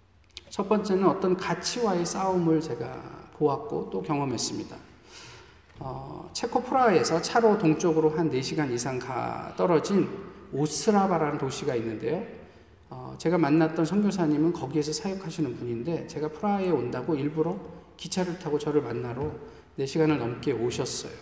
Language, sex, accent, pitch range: Korean, male, native, 145-190 Hz